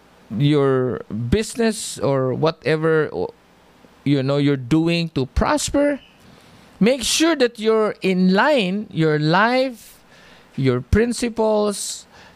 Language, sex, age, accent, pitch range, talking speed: English, male, 50-69, Filipino, 155-220 Hz, 95 wpm